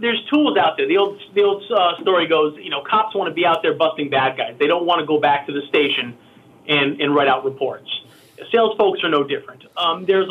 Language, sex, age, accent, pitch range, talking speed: English, male, 30-49, American, 150-220 Hz, 245 wpm